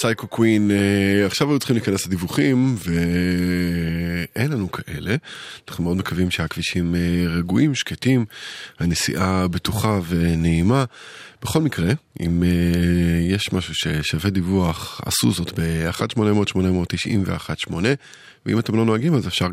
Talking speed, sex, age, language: 115 wpm, male, 20-39, Hebrew